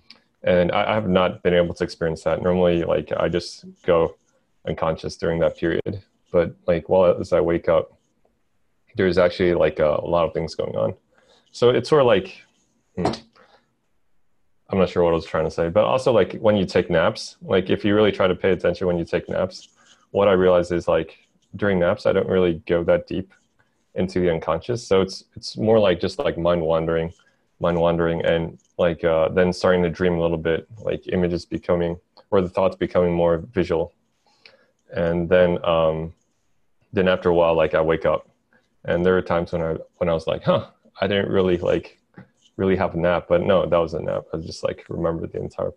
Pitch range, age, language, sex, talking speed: 85-95 Hz, 30-49, English, male, 200 wpm